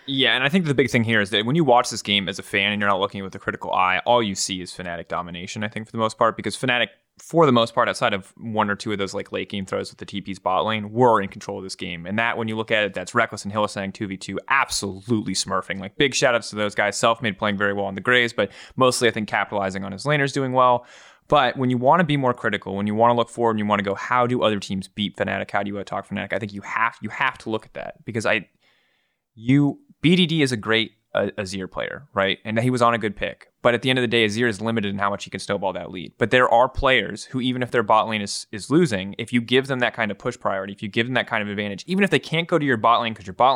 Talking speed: 315 wpm